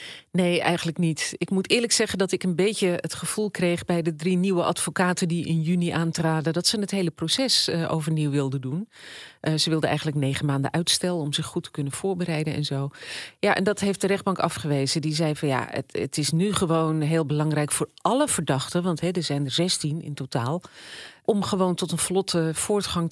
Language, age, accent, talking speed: Dutch, 40-59, Dutch, 210 wpm